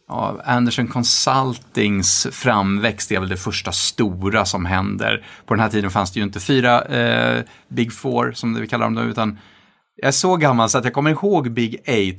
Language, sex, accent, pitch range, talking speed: English, male, Norwegian, 105-135 Hz, 195 wpm